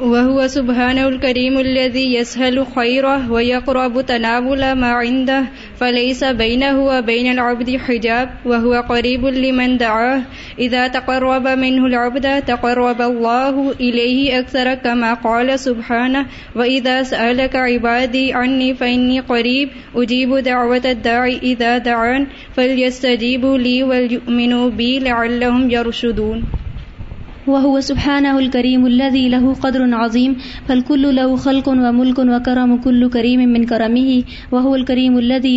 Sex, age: female, 20-39